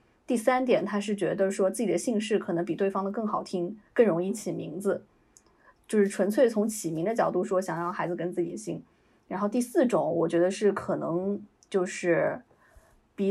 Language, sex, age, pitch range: Chinese, female, 20-39, 185-230 Hz